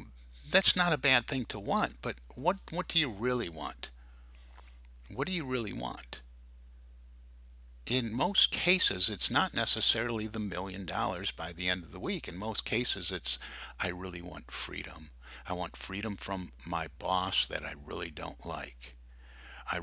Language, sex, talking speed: English, male, 165 wpm